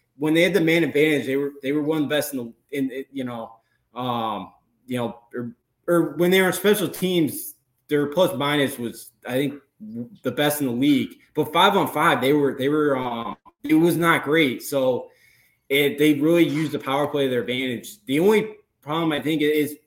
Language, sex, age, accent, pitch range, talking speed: English, male, 20-39, American, 125-155 Hz, 215 wpm